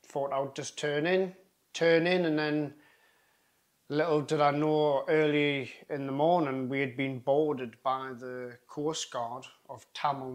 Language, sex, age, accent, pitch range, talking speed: English, male, 30-49, British, 125-155 Hz, 160 wpm